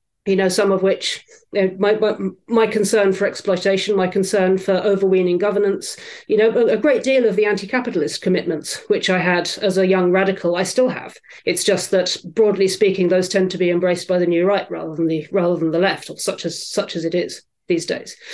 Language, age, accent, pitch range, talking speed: English, 40-59, British, 185-225 Hz, 225 wpm